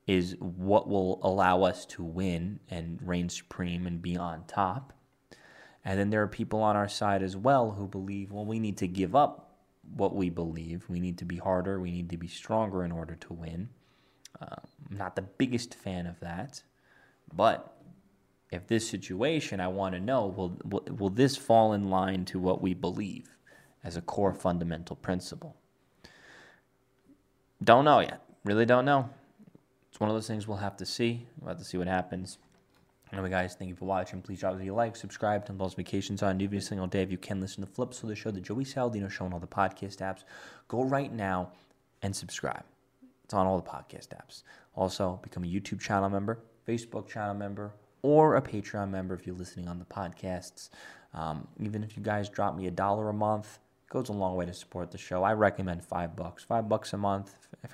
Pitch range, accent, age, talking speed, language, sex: 90-105 Hz, American, 20-39, 205 wpm, English, male